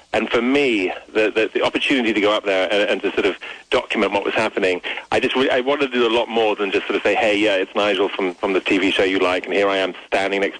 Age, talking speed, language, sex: 30-49, 295 wpm, English, male